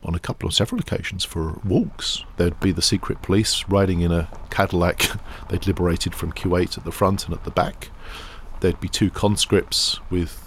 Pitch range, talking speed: 85-100 Hz, 190 wpm